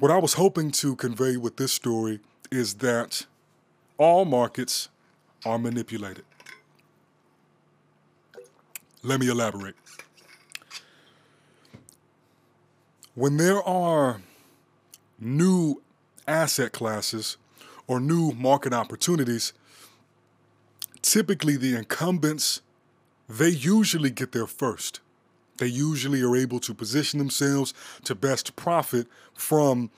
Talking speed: 95 wpm